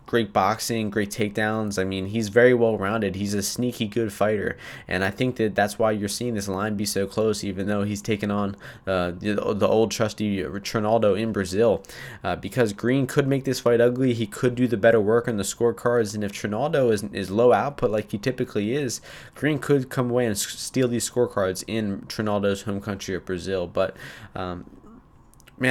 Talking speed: 200 wpm